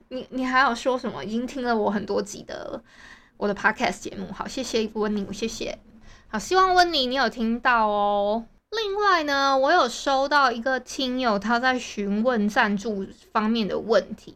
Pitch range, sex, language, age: 210-270 Hz, female, Chinese, 20-39